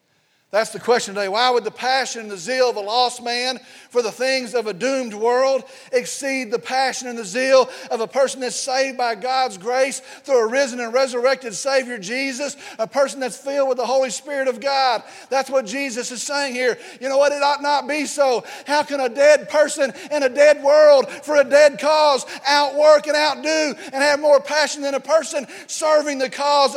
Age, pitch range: 40-59, 195-280 Hz